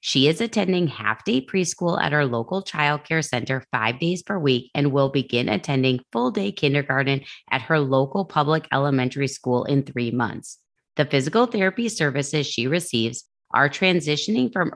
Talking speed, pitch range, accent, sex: 160 wpm, 130-175 Hz, American, female